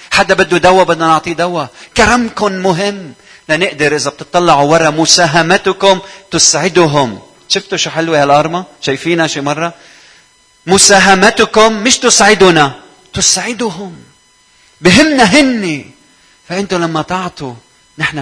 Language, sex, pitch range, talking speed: Arabic, male, 145-205 Hz, 100 wpm